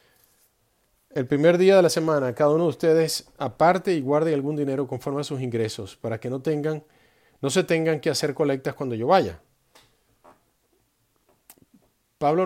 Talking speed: 160 wpm